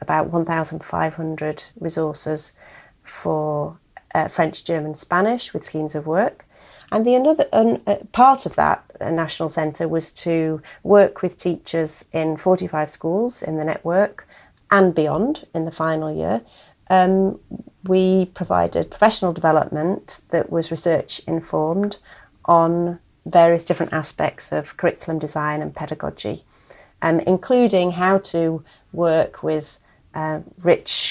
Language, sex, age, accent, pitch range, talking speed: English, female, 30-49, British, 155-185 Hz, 125 wpm